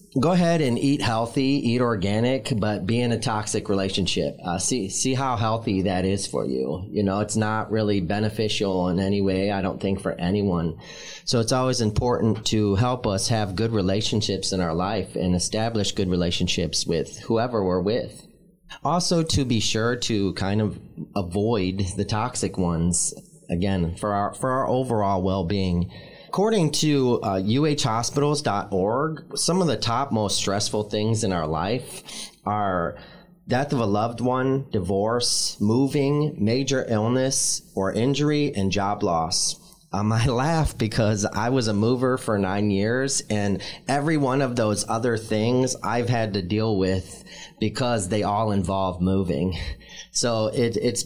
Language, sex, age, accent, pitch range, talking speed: English, male, 30-49, American, 100-130 Hz, 160 wpm